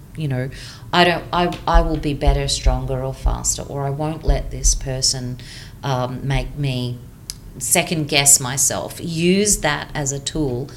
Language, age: English, 40-59